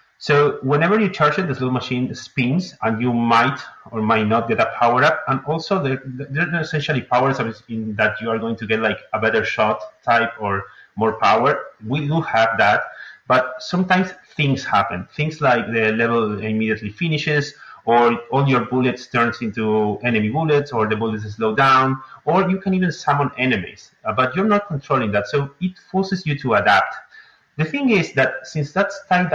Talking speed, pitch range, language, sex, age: 185 wpm, 115-150 Hz, English, male, 30-49